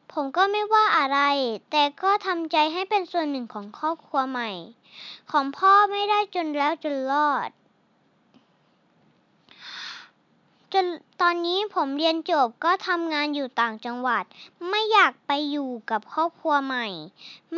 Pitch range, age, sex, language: 270-370 Hz, 20-39, male, Thai